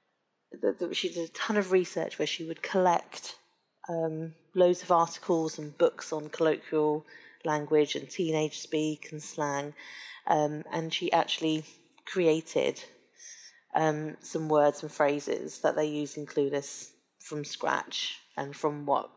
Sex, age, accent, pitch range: female, 30-49, British, 145-165 Hz